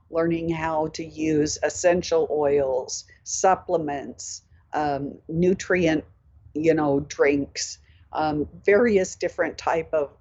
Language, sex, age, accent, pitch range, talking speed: English, female, 60-79, American, 145-180 Hz, 100 wpm